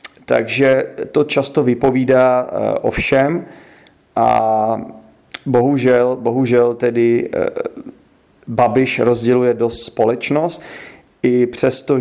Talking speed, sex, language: 80 wpm, male, Czech